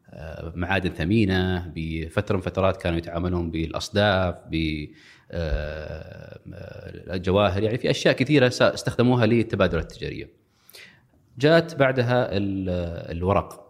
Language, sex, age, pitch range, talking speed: Arabic, male, 30-49, 85-115 Hz, 90 wpm